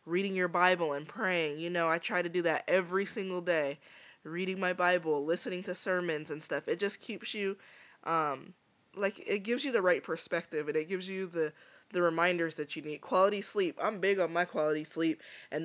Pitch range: 165-200 Hz